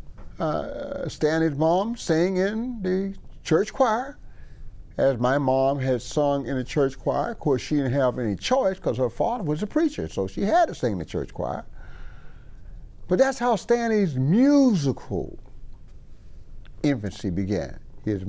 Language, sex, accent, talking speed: English, male, American, 155 wpm